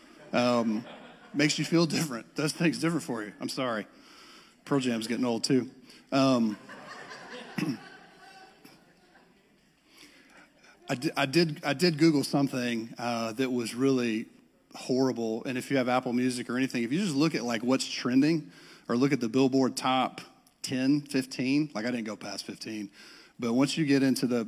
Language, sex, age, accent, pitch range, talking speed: English, male, 40-59, American, 120-150 Hz, 165 wpm